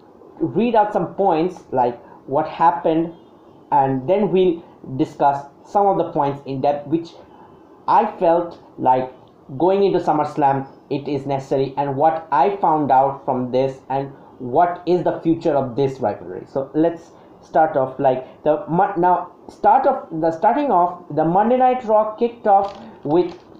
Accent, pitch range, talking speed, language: Indian, 140-185 Hz, 160 wpm, English